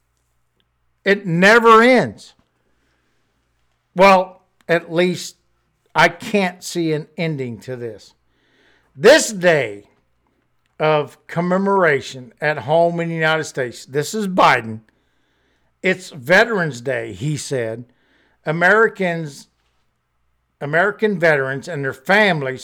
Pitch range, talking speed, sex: 130-180 Hz, 100 wpm, male